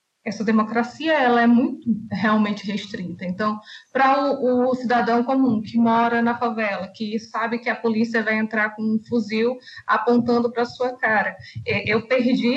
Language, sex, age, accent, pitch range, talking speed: Portuguese, female, 20-39, Brazilian, 215-255 Hz, 160 wpm